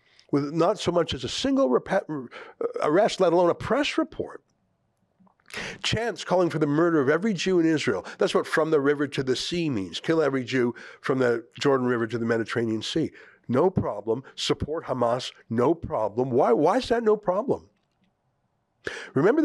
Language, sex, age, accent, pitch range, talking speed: English, male, 60-79, American, 125-170 Hz, 175 wpm